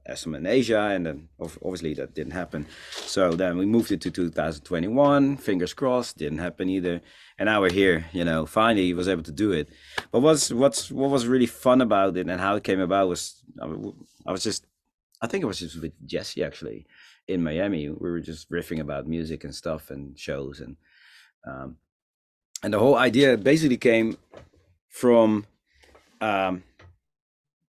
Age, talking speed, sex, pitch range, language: 30-49, 175 wpm, male, 85-120 Hz, English